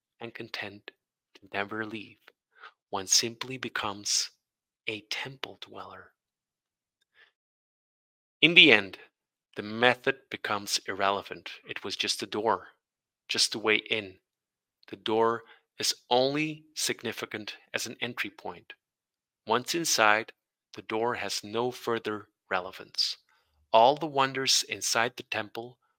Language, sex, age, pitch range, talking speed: English, male, 30-49, 110-135 Hz, 115 wpm